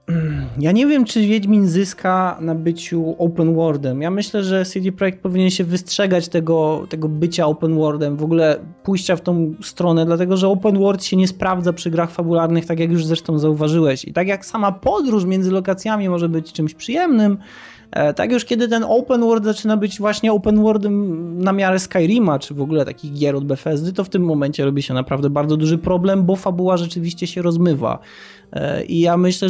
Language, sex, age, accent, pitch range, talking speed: Polish, male, 20-39, native, 155-195 Hz, 190 wpm